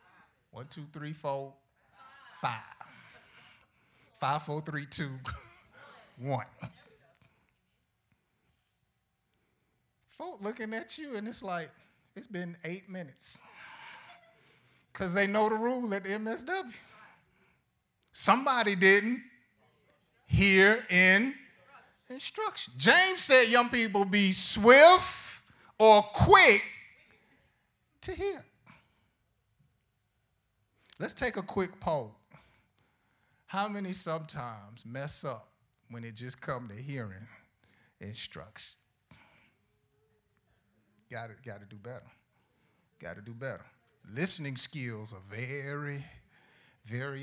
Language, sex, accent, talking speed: English, male, American, 95 wpm